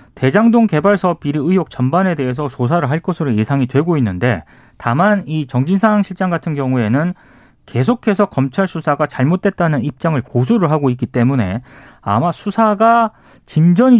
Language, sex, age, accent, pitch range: Korean, male, 30-49, native, 125-200 Hz